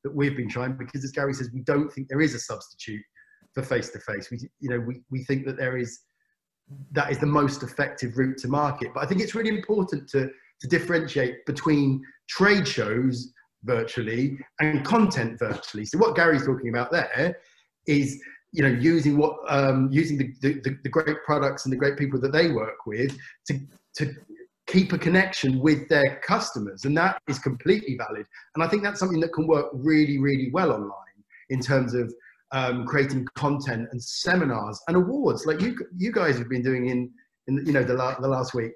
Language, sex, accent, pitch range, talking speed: English, male, British, 130-165 Hz, 195 wpm